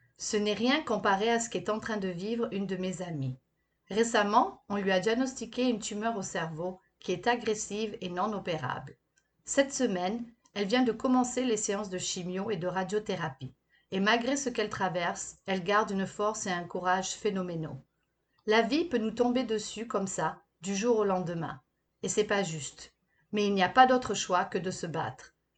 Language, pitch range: French, 180-235 Hz